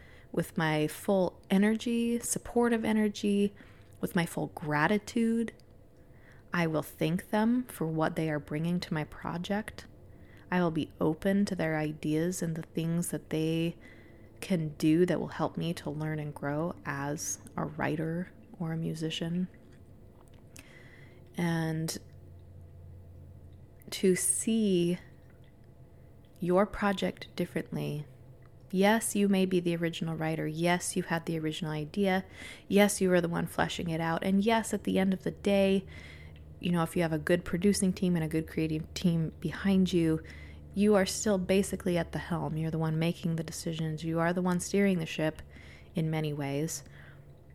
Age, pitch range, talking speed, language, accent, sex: 20-39, 155-195 Hz, 155 wpm, English, American, female